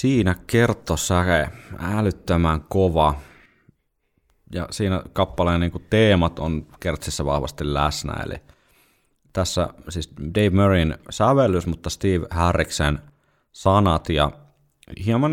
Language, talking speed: Finnish, 100 wpm